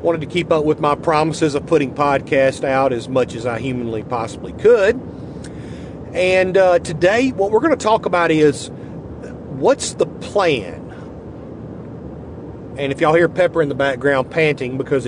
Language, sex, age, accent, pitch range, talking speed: English, male, 40-59, American, 140-185 Hz, 165 wpm